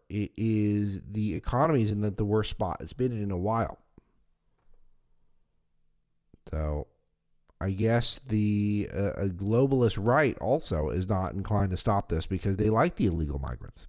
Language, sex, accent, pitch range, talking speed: English, male, American, 85-110 Hz, 150 wpm